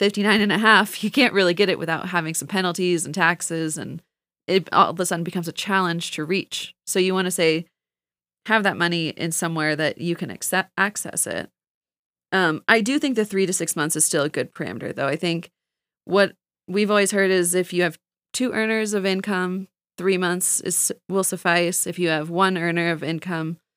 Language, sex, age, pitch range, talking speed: English, female, 20-39, 165-195 Hz, 205 wpm